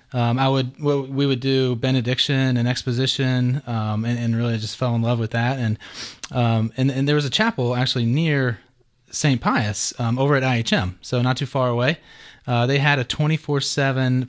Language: English